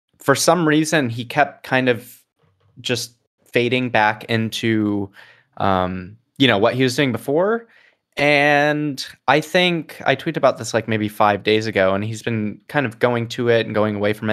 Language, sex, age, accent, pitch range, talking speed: English, male, 20-39, American, 105-135 Hz, 180 wpm